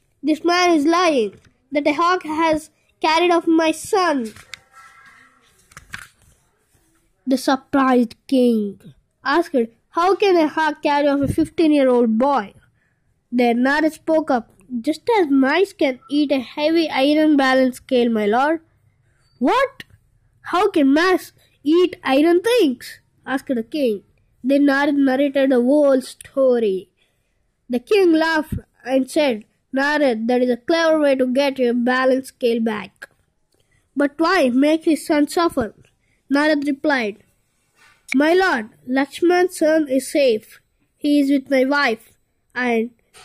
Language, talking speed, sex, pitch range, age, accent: Telugu, 130 wpm, female, 255-320 Hz, 20-39, native